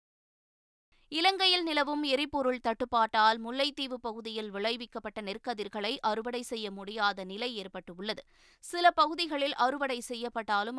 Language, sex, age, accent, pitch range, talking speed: Tamil, female, 20-39, native, 215-270 Hz, 95 wpm